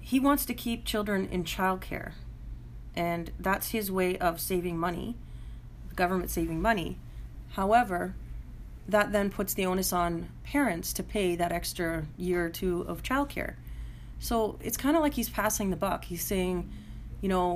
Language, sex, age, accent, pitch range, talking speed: English, female, 30-49, American, 155-200 Hz, 165 wpm